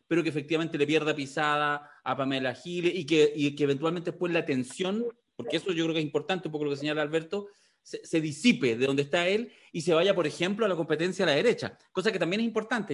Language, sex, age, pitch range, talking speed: Spanish, male, 30-49, 145-195 Hz, 245 wpm